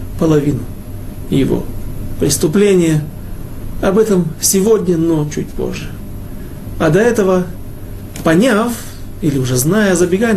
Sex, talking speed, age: male, 100 wpm, 40-59